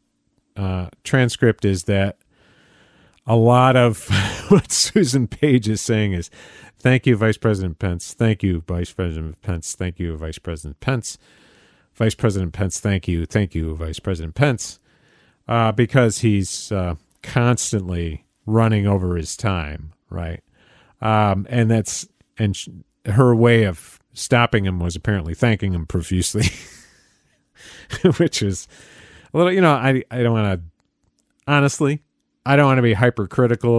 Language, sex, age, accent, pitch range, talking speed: English, male, 40-59, American, 90-120 Hz, 140 wpm